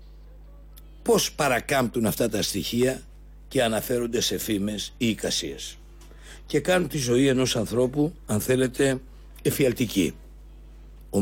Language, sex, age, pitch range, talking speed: Greek, male, 60-79, 115-155 Hz, 110 wpm